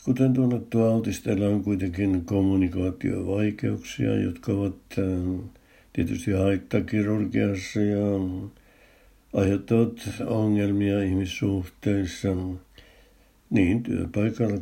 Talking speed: 60 wpm